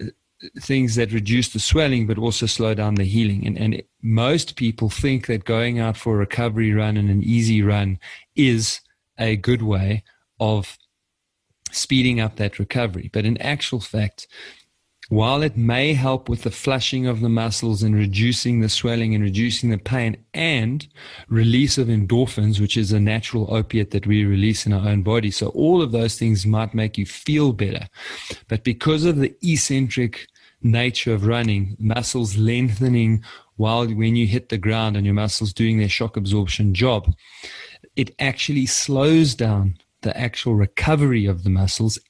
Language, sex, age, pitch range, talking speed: English, male, 30-49, 105-125 Hz, 170 wpm